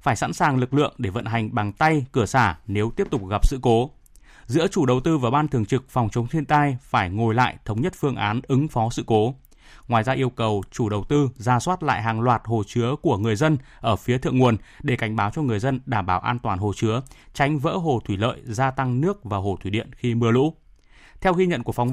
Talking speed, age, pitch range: 255 wpm, 20-39, 115-150 Hz